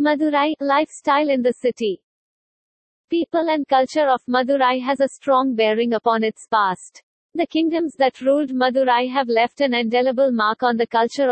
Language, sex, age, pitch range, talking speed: English, female, 50-69, 235-285 Hz, 160 wpm